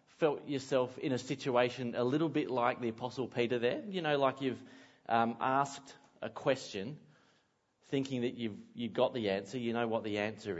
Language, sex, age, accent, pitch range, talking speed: English, male, 30-49, Australian, 115-140 Hz, 185 wpm